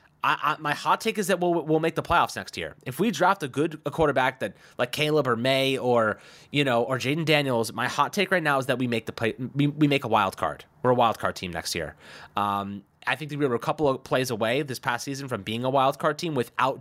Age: 20-39